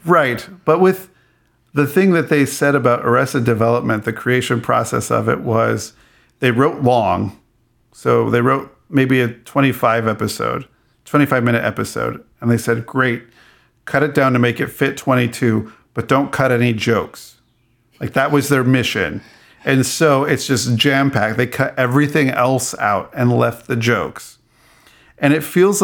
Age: 50-69